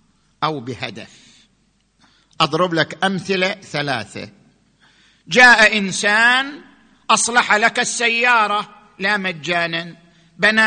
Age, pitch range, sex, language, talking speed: 50-69, 175-245 Hz, male, Arabic, 80 wpm